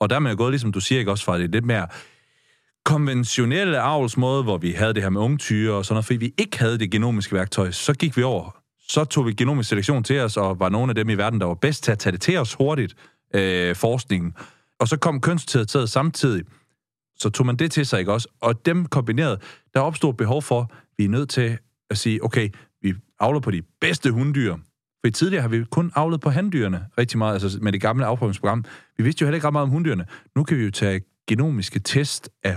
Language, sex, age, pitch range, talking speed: Danish, male, 30-49, 100-140 Hz, 235 wpm